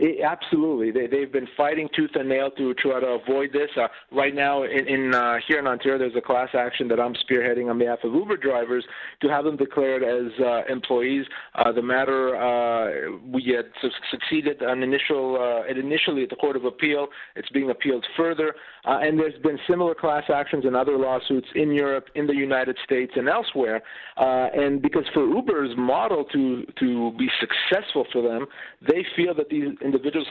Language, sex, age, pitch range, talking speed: English, male, 40-59, 125-150 Hz, 195 wpm